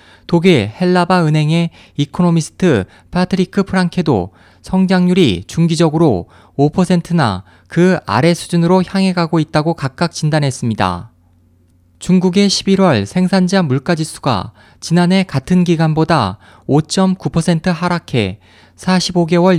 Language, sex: Korean, male